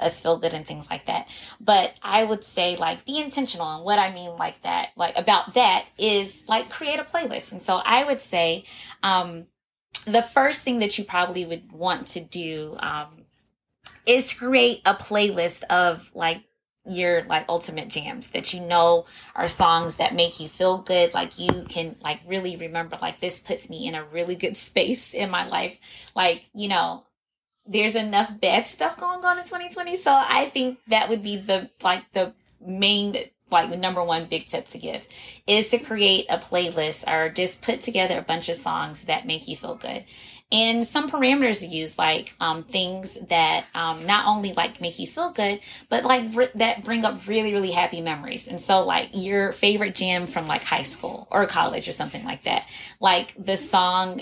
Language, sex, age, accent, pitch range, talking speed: English, female, 20-39, American, 170-235 Hz, 195 wpm